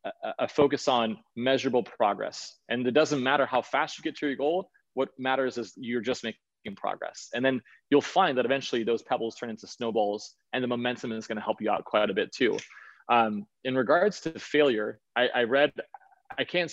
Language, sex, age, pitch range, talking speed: English, male, 20-39, 115-145 Hz, 200 wpm